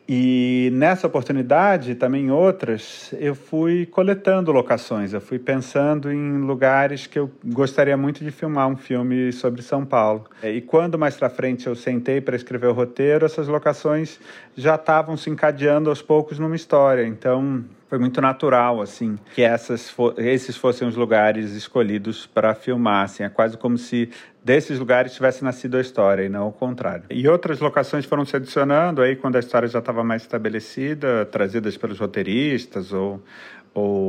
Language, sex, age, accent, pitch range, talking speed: Portuguese, male, 40-59, Brazilian, 110-145 Hz, 170 wpm